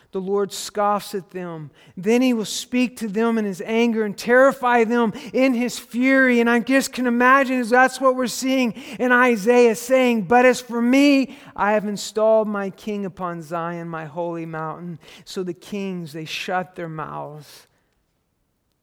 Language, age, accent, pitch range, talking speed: English, 50-69, American, 190-270 Hz, 170 wpm